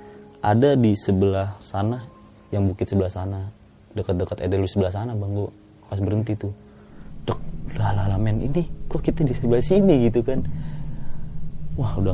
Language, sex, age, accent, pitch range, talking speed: Indonesian, male, 20-39, native, 95-110 Hz, 145 wpm